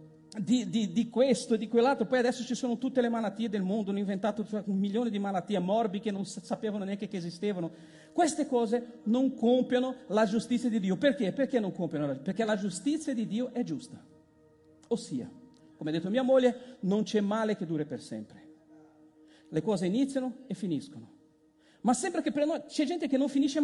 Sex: male